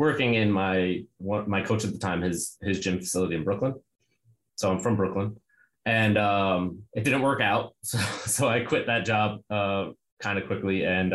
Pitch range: 95-110 Hz